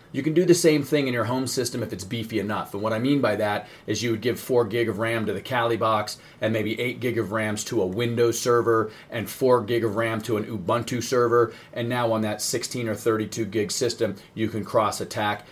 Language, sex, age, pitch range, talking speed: English, male, 40-59, 110-130 Hz, 250 wpm